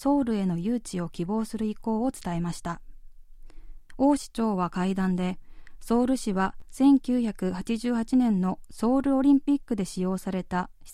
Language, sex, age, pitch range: Japanese, female, 20-39, 185-245 Hz